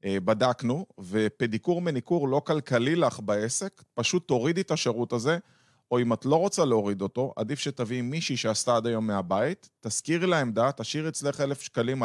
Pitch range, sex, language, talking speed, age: 110-135 Hz, male, Hebrew, 160 wpm, 30-49